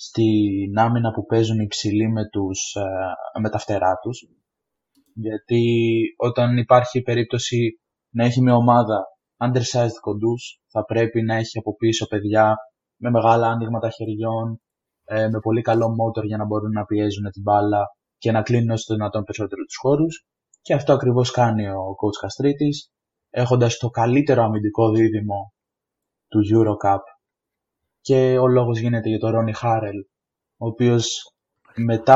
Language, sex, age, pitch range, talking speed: Greek, male, 20-39, 110-125 Hz, 140 wpm